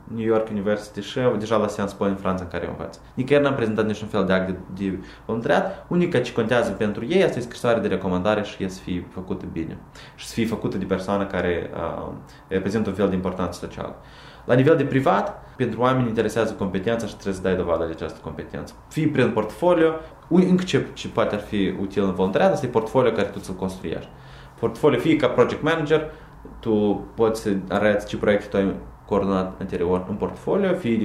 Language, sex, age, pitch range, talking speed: Romanian, male, 20-39, 95-140 Hz, 205 wpm